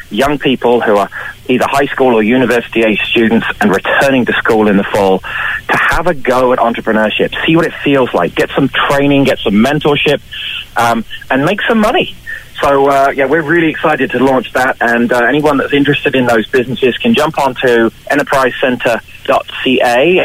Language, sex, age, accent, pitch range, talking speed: English, male, 30-49, British, 115-140 Hz, 180 wpm